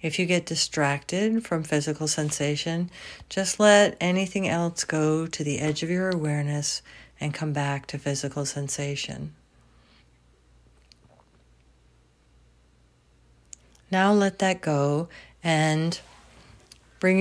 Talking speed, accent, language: 105 wpm, American, English